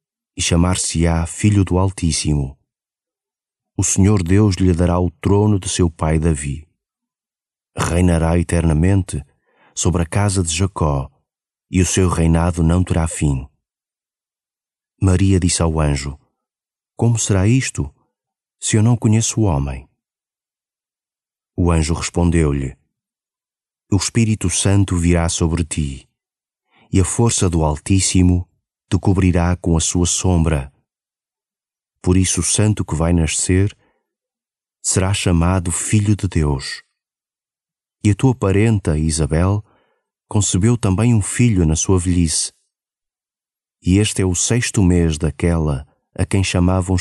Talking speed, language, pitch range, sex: 125 wpm, Portuguese, 80-100 Hz, male